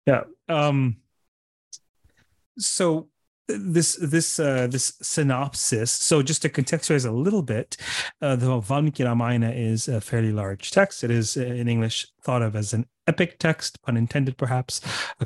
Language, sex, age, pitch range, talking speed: English, male, 30-49, 110-135 Hz, 145 wpm